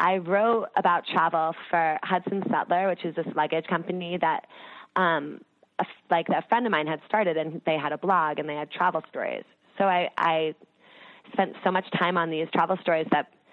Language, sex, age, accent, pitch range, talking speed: English, female, 20-39, American, 155-190 Hz, 195 wpm